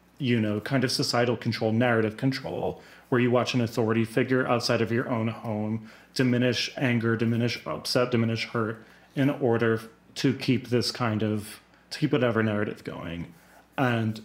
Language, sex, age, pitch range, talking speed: English, male, 30-49, 115-135 Hz, 160 wpm